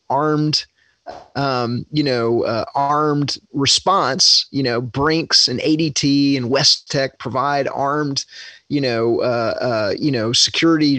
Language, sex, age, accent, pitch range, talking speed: English, male, 30-49, American, 130-150 Hz, 130 wpm